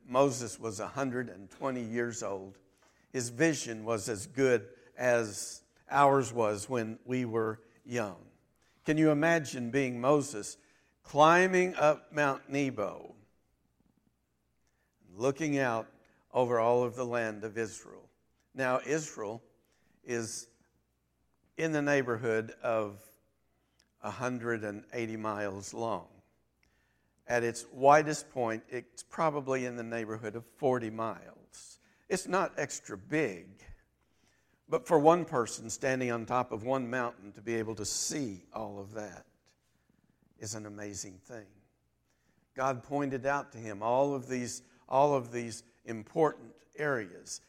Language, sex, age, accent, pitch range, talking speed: English, male, 50-69, American, 110-135 Hz, 120 wpm